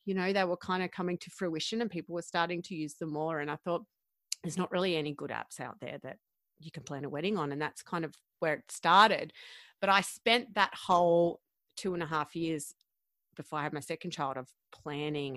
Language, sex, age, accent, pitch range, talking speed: English, female, 30-49, Australian, 150-190 Hz, 235 wpm